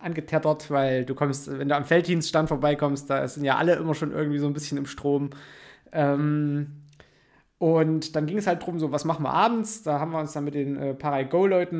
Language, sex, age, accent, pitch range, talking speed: German, male, 20-39, German, 140-165 Hz, 215 wpm